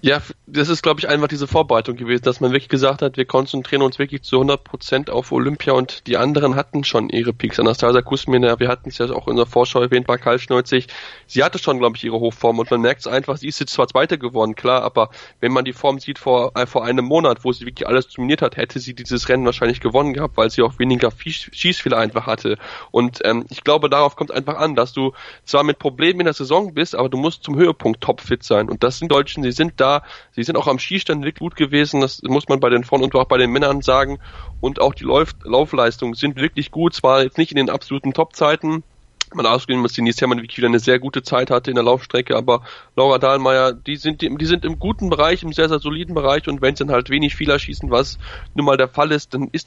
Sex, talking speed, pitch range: male, 250 wpm, 125-145 Hz